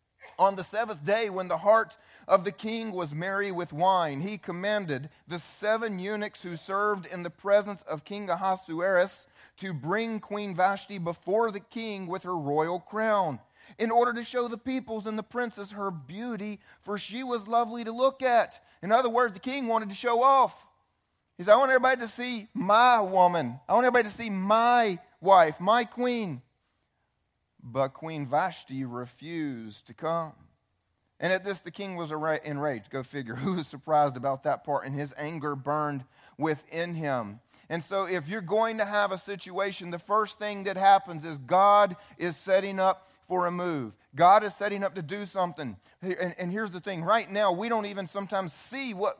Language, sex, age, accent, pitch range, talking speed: English, male, 30-49, American, 170-215 Hz, 185 wpm